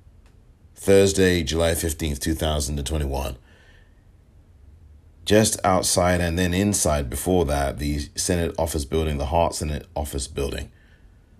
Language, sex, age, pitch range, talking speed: English, male, 40-59, 75-95 Hz, 105 wpm